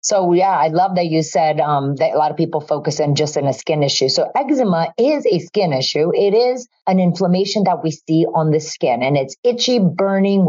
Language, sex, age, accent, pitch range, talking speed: English, female, 30-49, American, 165-225 Hz, 230 wpm